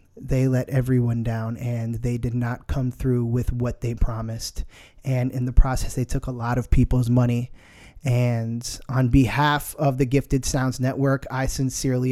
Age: 20-39